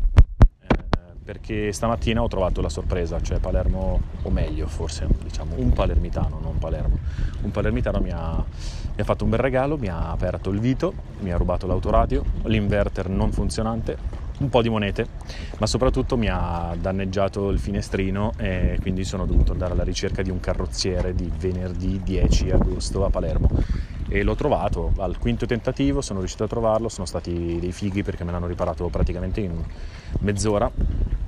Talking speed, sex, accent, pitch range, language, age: 165 wpm, male, native, 85-105 Hz, Italian, 30-49